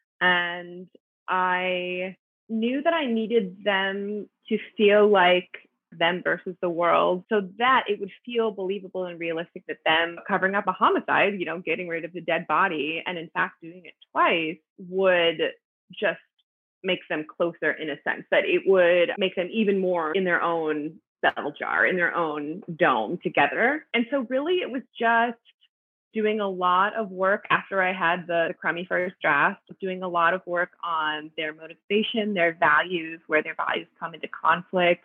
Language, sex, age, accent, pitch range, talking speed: English, female, 20-39, American, 170-195 Hz, 175 wpm